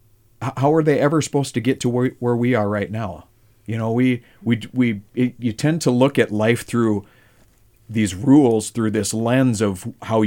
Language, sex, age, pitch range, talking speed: English, male, 40-59, 105-125 Hz, 195 wpm